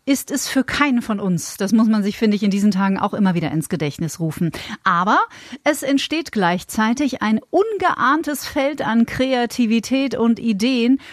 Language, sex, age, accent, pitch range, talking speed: German, female, 40-59, German, 185-245 Hz, 175 wpm